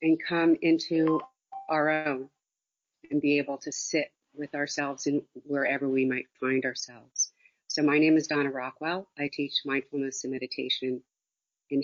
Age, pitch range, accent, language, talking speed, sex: 50-69, 135-165 Hz, American, English, 150 wpm, female